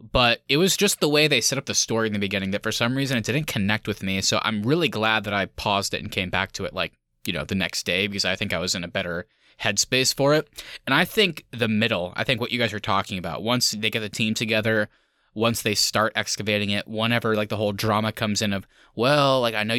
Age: 20-39